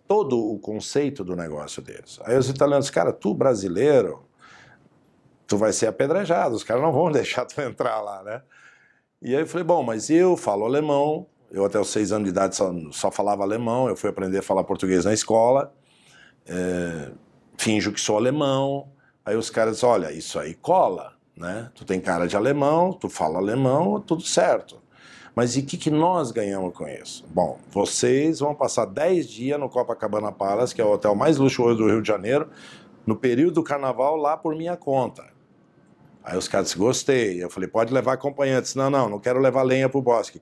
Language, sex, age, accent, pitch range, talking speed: Portuguese, male, 60-79, Brazilian, 105-150 Hz, 195 wpm